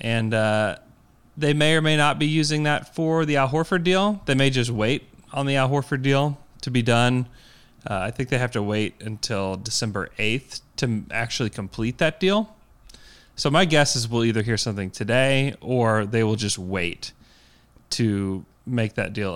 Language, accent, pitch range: English, American, 100-130 Hz